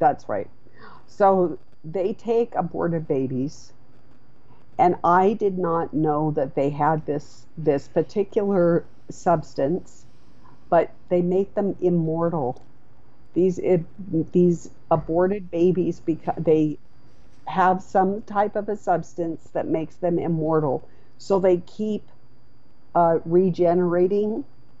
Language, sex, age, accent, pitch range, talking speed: English, female, 50-69, American, 155-180 Hz, 110 wpm